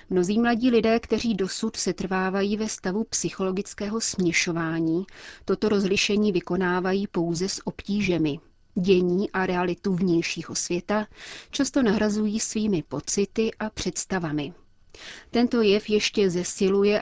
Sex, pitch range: female, 180-215 Hz